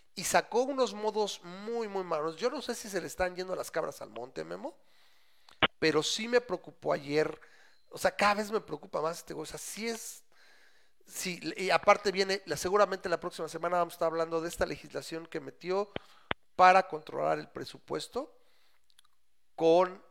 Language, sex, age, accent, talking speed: Spanish, male, 40-59, Mexican, 180 wpm